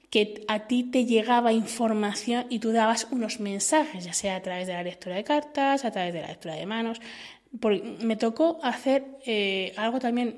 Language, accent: Spanish, Spanish